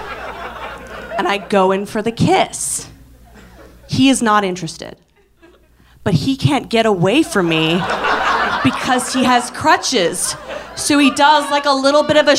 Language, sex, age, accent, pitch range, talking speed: English, female, 30-49, American, 215-300 Hz, 150 wpm